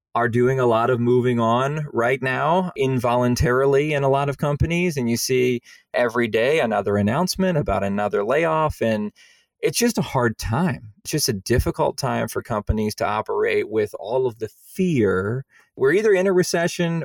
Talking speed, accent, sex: 175 wpm, American, male